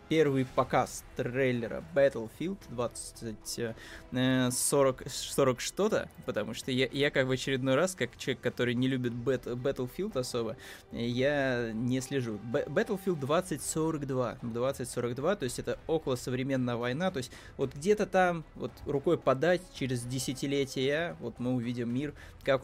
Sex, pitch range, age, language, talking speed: male, 120-145 Hz, 20-39, Russian, 130 wpm